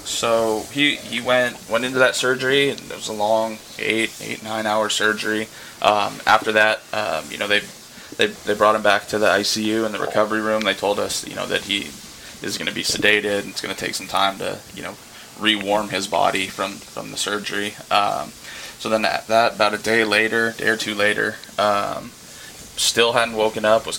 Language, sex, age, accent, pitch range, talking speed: English, male, 20-39, American, 105-110 Hz, 215 wpm